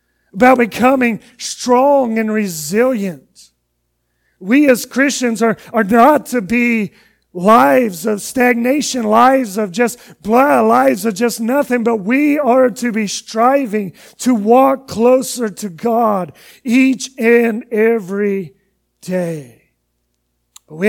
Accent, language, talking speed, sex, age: American, English, 115 wpm, male, 40-59